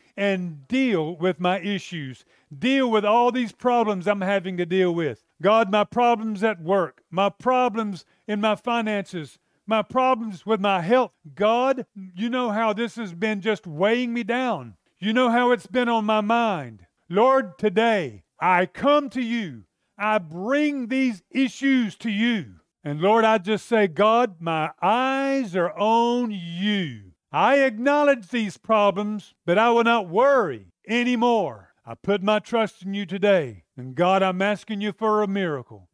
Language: English